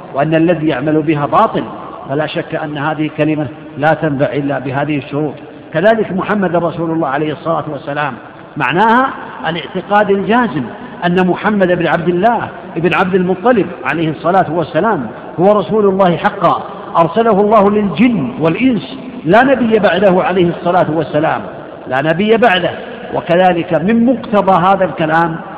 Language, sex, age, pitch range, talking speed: Arabic, male, 50-69, 165-205 Hz, 135 wpm